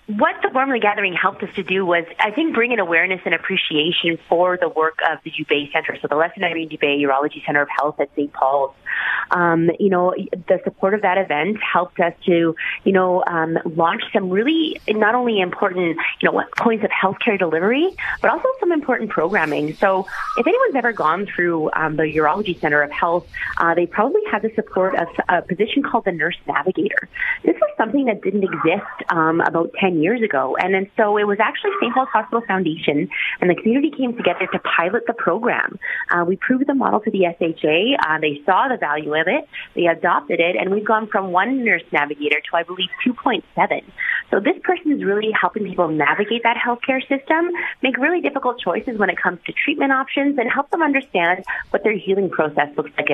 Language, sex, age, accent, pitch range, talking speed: English, female, 30-49, American, 165-230 Hz, 205 wpm